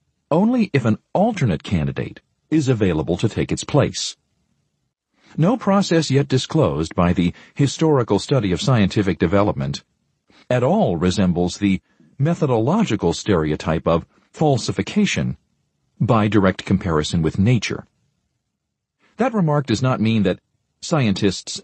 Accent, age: American, 50-69